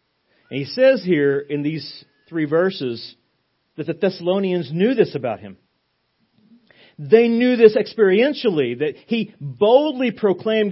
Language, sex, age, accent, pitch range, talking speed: English, male, 40-59, American, 150-240 Hz, 130 wpm